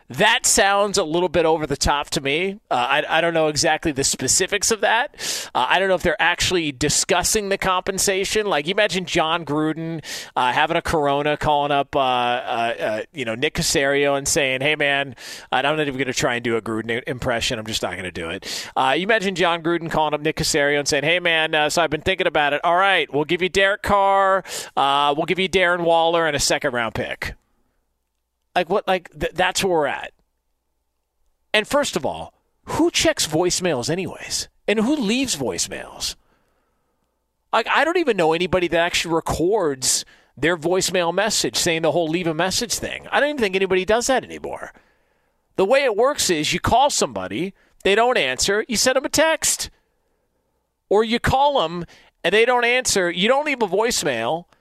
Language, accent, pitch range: English, American, 145-200 Hz